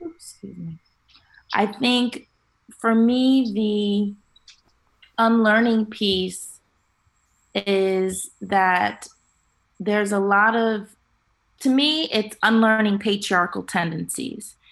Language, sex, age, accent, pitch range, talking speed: English, female, 20-39, American, 190-220 Hz, 90 wpm